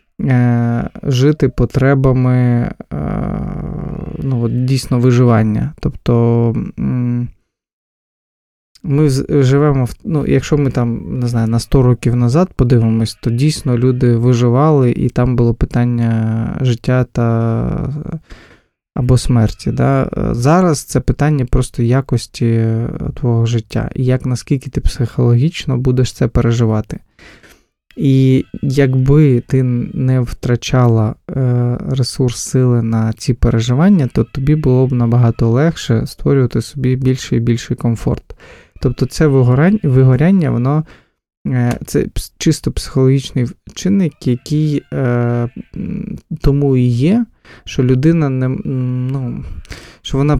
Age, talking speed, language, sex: 20-39, 100 wpm, Ukrainian, male